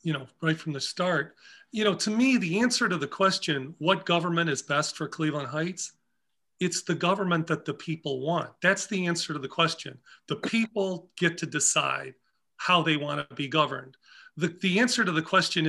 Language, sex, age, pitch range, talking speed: English, male, 40-59, 155-190 Hz, 200 wpm